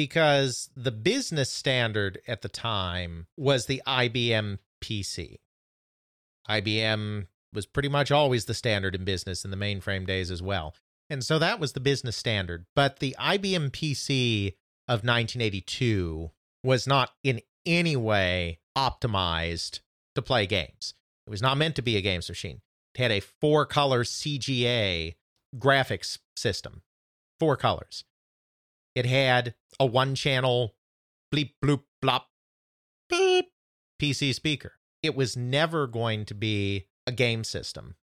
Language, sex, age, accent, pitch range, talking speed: English, male, 40-59, American, 100-140 Hz, 135 wpm